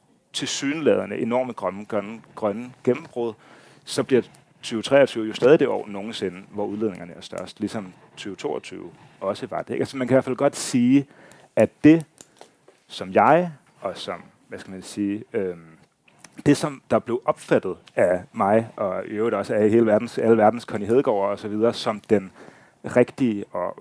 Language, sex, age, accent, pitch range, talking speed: Danish, male, 30-49, native, 105-135 Hz, 170 wpm